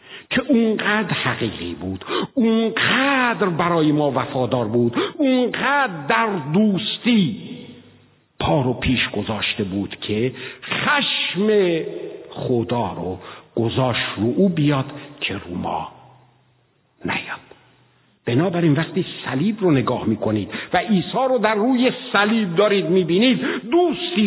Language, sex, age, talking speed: Persian, male, 60-79, 110 wpm